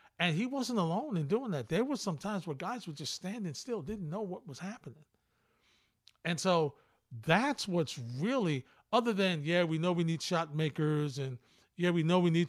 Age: 50-69